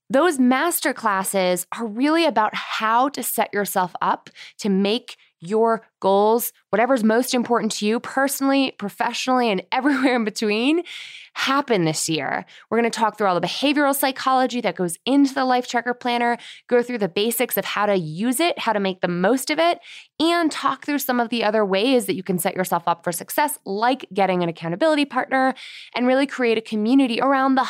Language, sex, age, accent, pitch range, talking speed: English, female, 20-39, American, 180-250 Hz, 195 wpm